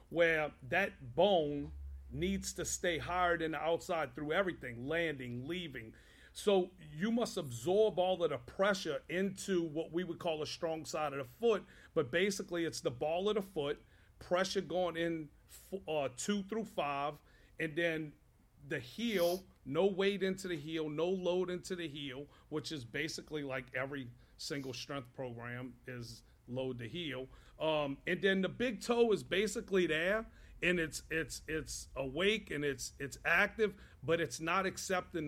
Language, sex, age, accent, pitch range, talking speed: English, male, 40-59, American, 145-190 Hz, 165 wpm